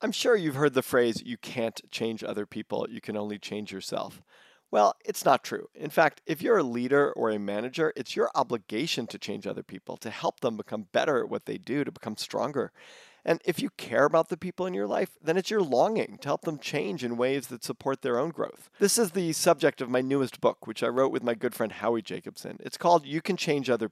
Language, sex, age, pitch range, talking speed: English, male, 40-59, 115-150 Hz, 240 wpm